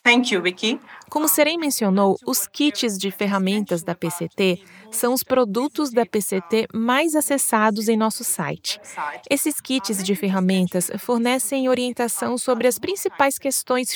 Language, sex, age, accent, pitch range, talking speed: English, female, 20-39, Brazilian, 200-265 Hz, 125 wpm